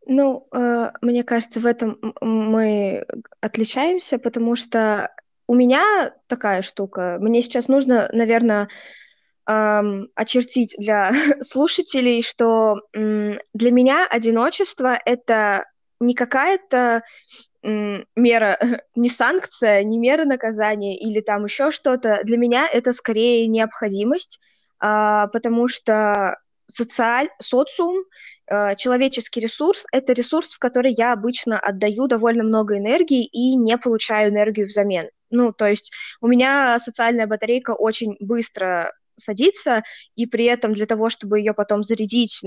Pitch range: 210-250 Hz